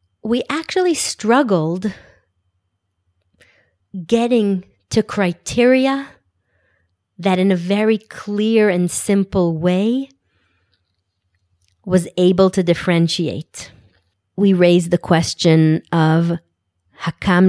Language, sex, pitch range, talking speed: English, female, 125-195 Hz, 80 wpm